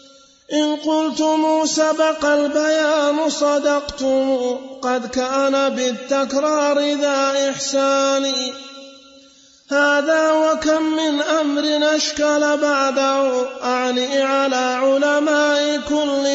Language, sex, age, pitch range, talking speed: Arabic, male, 30-49, 275-295 Hz, 75 wpm